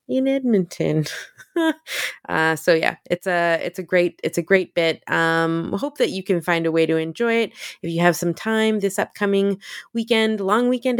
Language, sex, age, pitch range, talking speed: English, female, 20-39, 170-225 Hz, 190 wpm